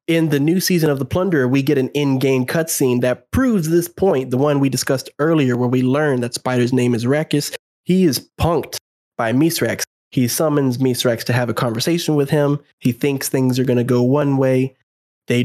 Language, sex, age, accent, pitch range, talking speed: English, male, 20-39, American, 125-150 Hz, 200 wpm